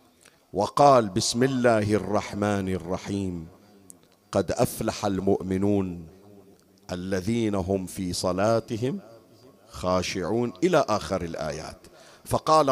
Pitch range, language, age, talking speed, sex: 110-165 Hz, Arabic, 50-69, 80 wpm, male